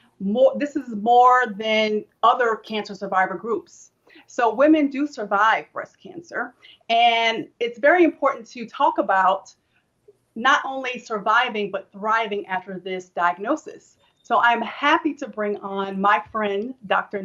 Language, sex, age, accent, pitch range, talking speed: English, female, 30-49, American, 205-285 Hz, 135 wpm